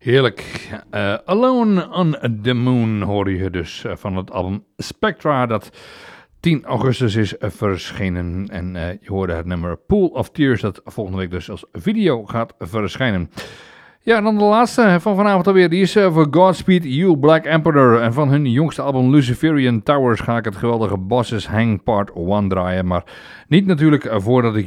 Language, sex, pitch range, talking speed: English, male, 105-150 Hz, 180 wpm